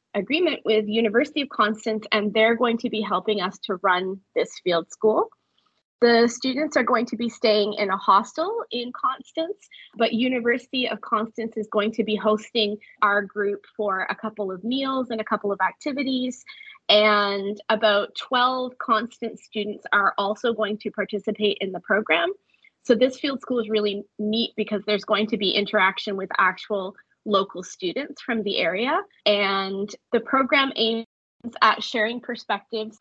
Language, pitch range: English, 205-245 Hz